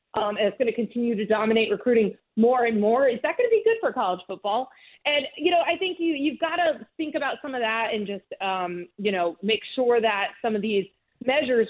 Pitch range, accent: 210-275 Hz, American